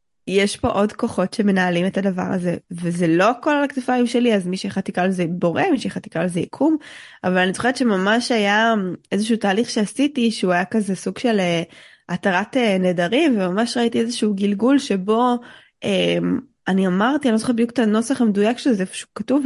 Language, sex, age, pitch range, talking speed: Hebrew, female, 20-39, 185-235 Hz, 175 wpm